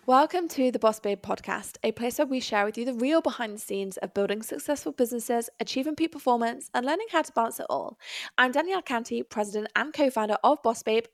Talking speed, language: 220 wpm, English